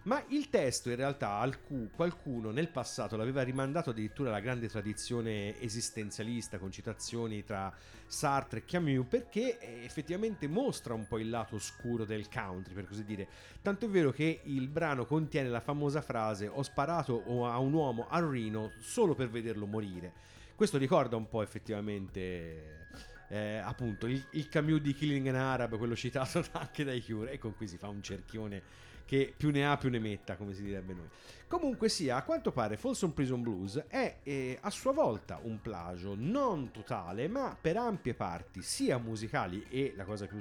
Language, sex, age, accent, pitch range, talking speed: Italian, male, 40-59, native, 110-150 Hz, 175 wpm